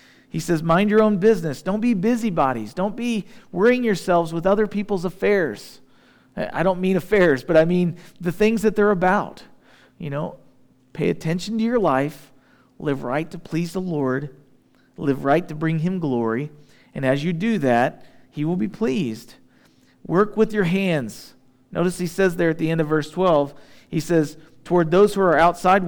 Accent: American